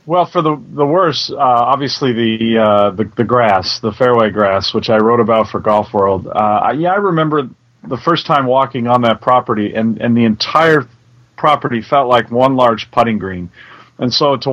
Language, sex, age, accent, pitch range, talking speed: English, male, 40-59, American, 110-130 Hz, 200 wpm